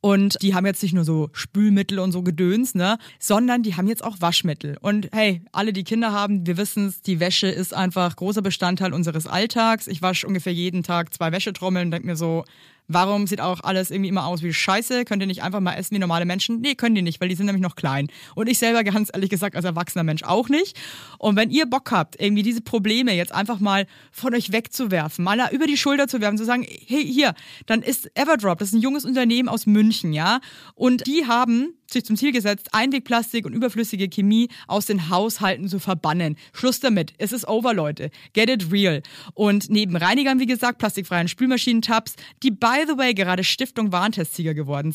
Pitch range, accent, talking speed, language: 180-230 Hz, German, 215 wpm, German